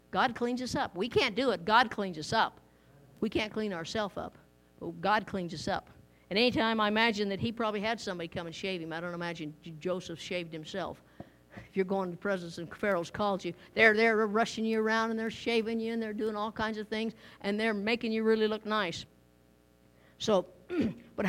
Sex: female